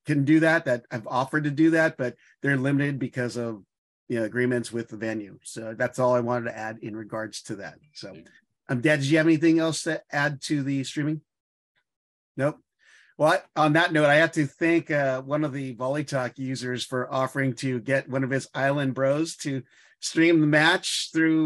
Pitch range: 130-160 Hz